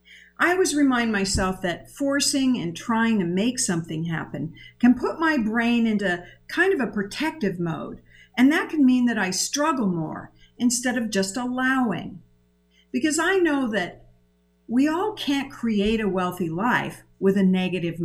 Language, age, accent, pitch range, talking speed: English, 50-69, American, 175-250 Hz, 160 wpm